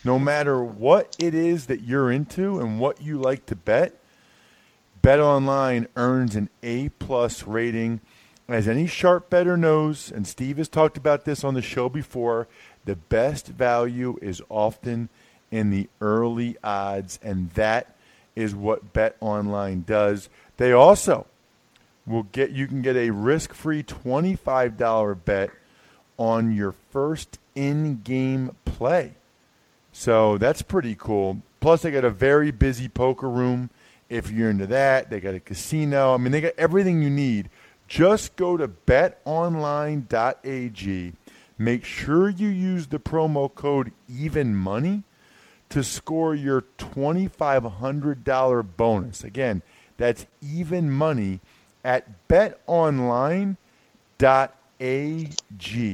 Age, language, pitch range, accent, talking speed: 40-59, English, 110-150 Hz, American, 130 wpm